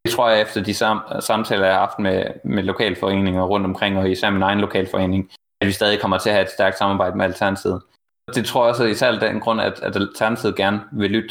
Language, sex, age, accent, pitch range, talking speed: Danish, male, 20-39, native, 95-115 Hz, 245 wpm